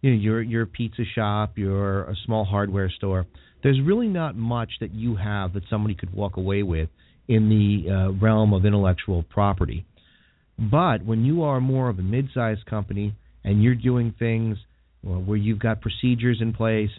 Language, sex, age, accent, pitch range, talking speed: English, male, 40-59, American, 95-120 Hz, 180 wpm